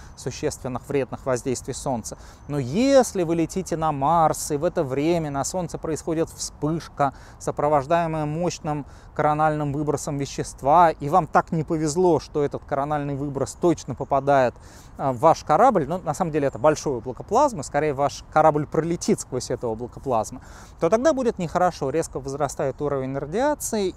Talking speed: 150 wpm